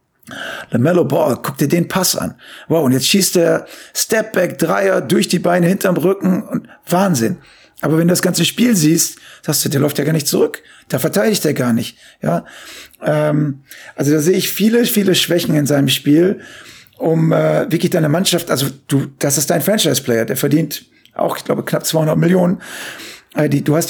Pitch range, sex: 150-180 Hz, male